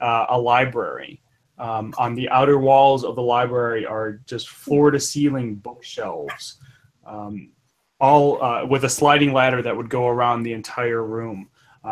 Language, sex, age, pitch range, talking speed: English, male, 20-39, 115-140 Hz, 150 wpm